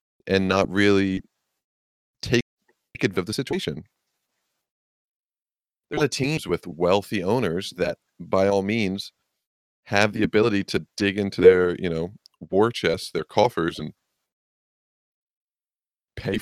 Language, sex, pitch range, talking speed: English, male, 85-100 Hz, 120 wpm